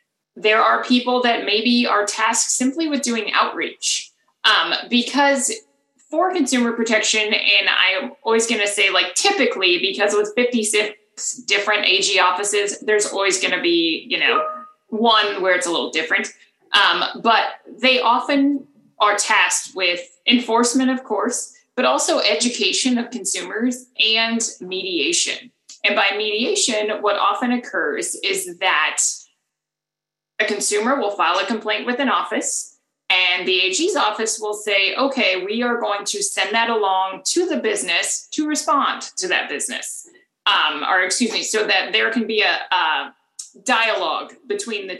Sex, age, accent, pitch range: female, 20-39, American, 200-265 Hz